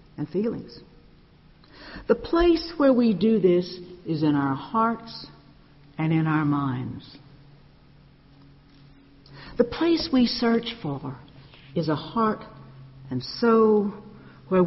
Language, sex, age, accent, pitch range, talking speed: English, female, 60-79, American, 150-185 Hz, 110 wpm